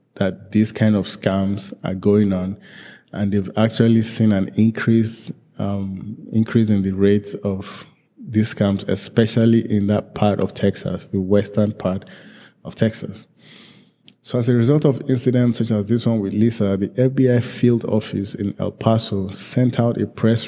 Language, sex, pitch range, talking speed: English, male, 100-115 Hz, 165 wpm